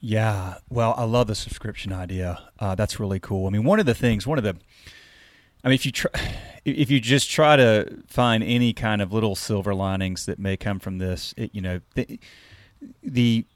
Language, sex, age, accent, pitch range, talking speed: English, male, 30-49, American, 95-110 Hz, 205 wpm